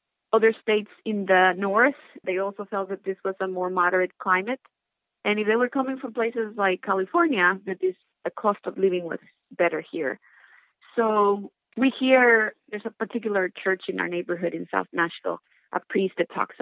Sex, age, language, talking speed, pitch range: female, 30-49, English, 180 wpm, 180-215 Hz